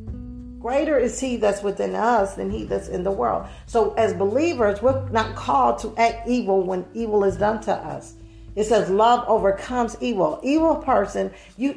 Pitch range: 180-245 Hz